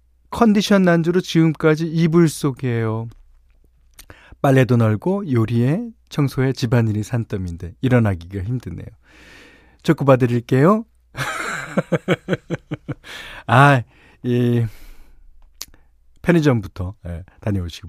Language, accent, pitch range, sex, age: Korean, native, 90-150 Hz, male, 40-59